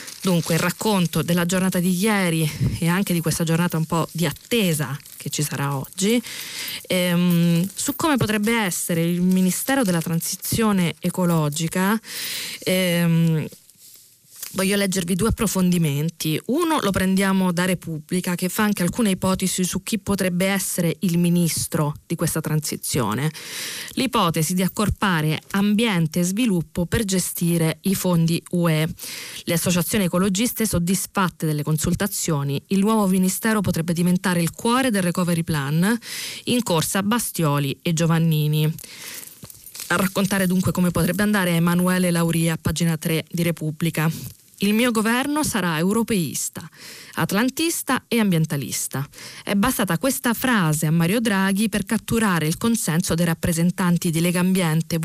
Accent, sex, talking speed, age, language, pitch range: native, female, 135 wpm, 20-39, Italian, 165-200 Hz